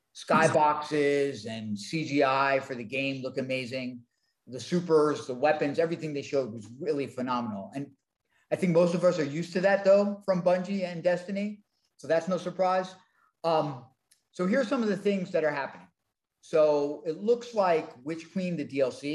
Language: English